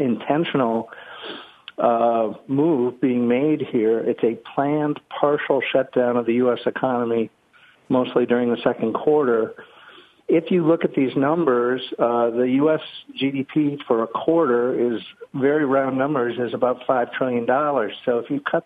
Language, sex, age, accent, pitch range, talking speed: English, male, 50-69, American, 120-140 Hz, 150 wpm